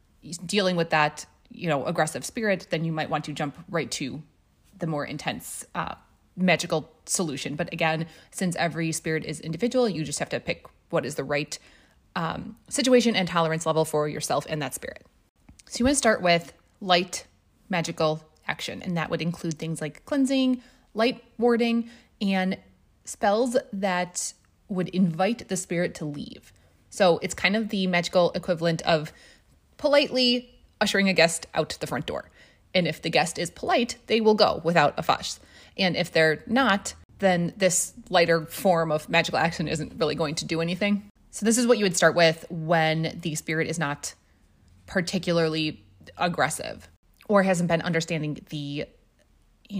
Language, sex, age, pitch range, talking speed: English, female, 20-39, 155-195 Hz, 170 wpm